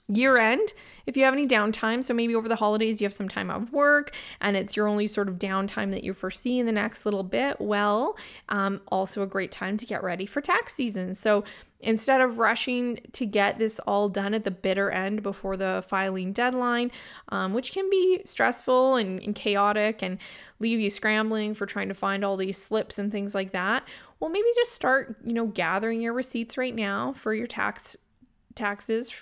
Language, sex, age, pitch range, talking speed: English, female, 20-39, 195-240 Hz, 205 wpm